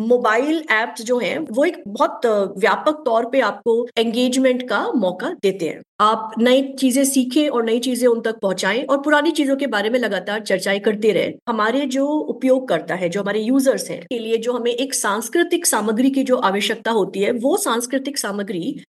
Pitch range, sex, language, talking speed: 210-260 Hz, female, Hindi, 185 wpm